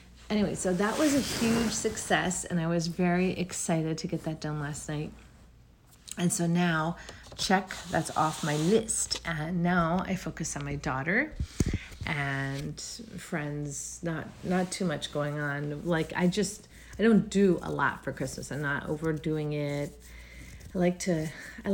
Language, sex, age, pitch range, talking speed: English, female, 40-59, 150-195 Hz, 165 wpm